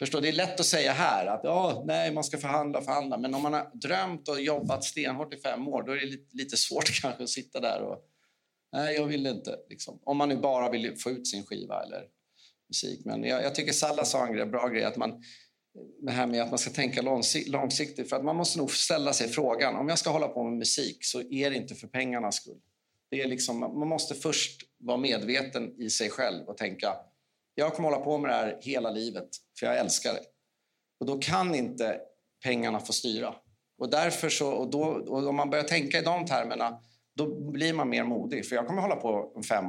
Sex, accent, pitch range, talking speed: male, native, 125-155 Hz, 230 wpm